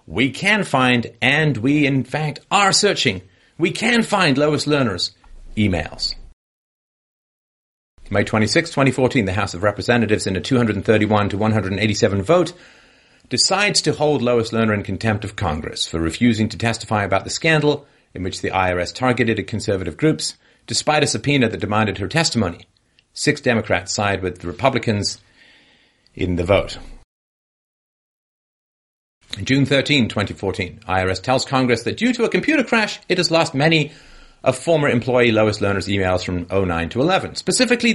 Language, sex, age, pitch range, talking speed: English, male, 40-59, 100-145 Hz, 150 wpm